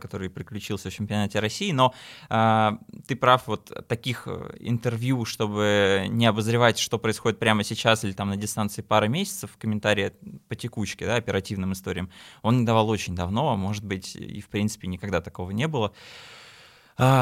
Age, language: 20-39, Russian